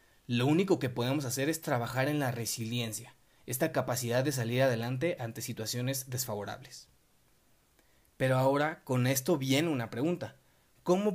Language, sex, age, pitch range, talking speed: Spanish, male, 30-49, 115-155 Hz, 140 wpm